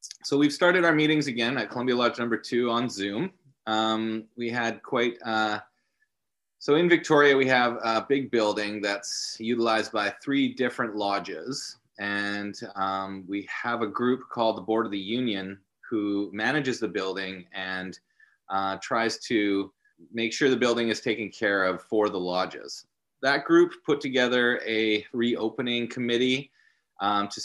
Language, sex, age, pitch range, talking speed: English, male, 30-49, 95-120 Hz, 155 wpm